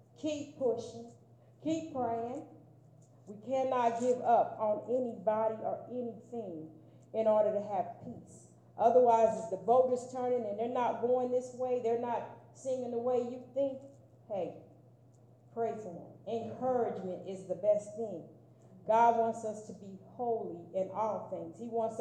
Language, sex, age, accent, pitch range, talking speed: English, female, 40-59, American, 185-235 Hz, 155 wpm